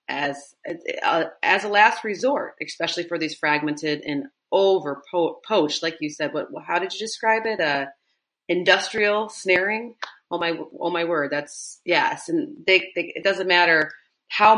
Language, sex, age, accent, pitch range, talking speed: English, female, 30-49, American, 145-175 Hz, 170 wpm